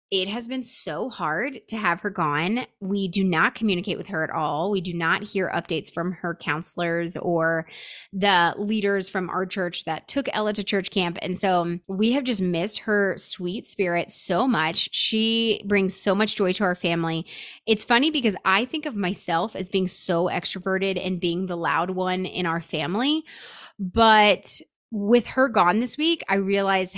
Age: 20-39